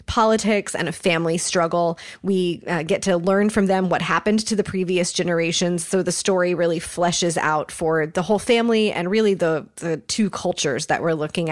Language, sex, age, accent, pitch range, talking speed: English, female, 20-39, American, 170-195 Hz, 195 wpm